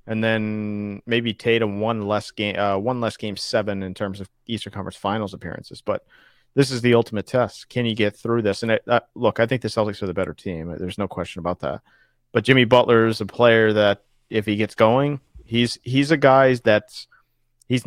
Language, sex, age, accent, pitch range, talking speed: English, male, 40-59, American, 105-130 Hz, 215 wpm